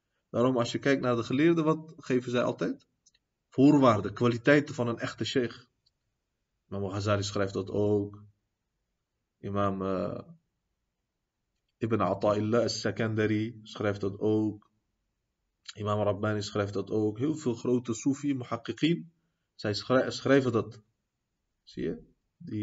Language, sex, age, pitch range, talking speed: Dutch, male, 30-49, 110-140 Hz, 120 wpm